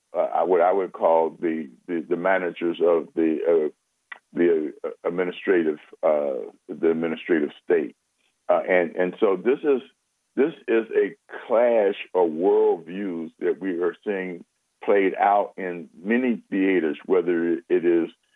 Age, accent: 60-79, American